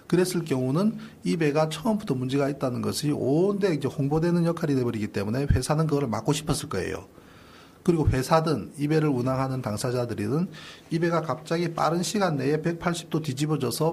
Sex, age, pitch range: male, 30-49, 120-160 Hz